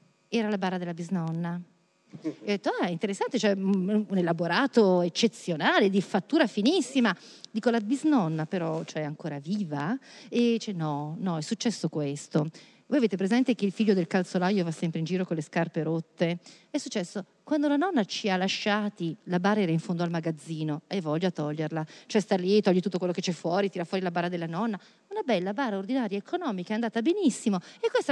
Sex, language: female, Italian